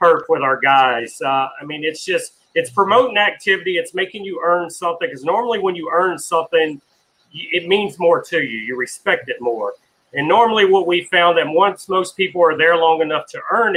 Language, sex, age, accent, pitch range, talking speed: English, male, 40-59, American, 150-180 Hz, 205 wpm